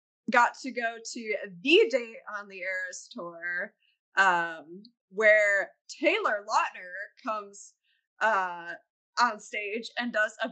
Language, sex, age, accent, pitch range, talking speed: English, female, 20-39, American, 190-250 Hz, 120 wpm